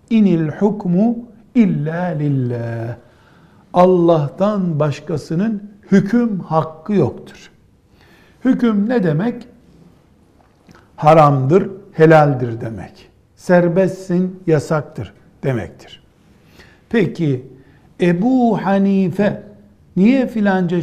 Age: 60-79